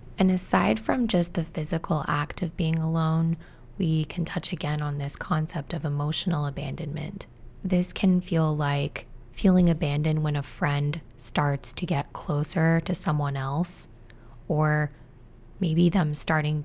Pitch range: 145-175 Hz